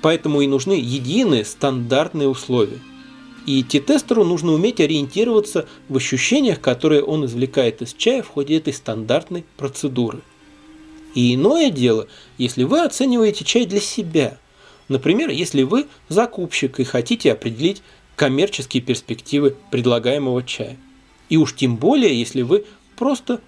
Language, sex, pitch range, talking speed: Russian, male, 130-195 Hz, 130 wpm